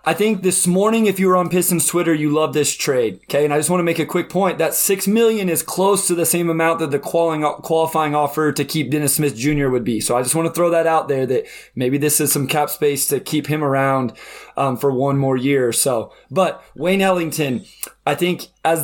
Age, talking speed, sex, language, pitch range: 20-39, 245 wpm, male, English, 140-165 Hz